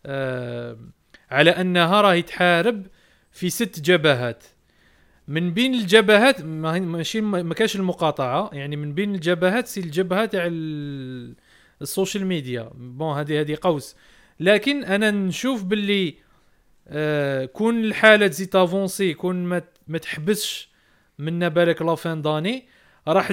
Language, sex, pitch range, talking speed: Arabic, male, 150-200 Hz, 110 wpm